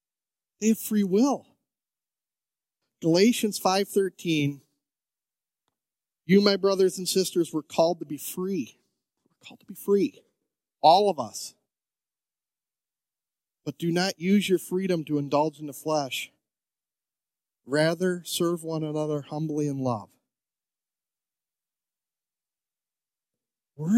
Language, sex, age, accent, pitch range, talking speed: English, male, 40-59, American, 135-190 Hz, 110 wpm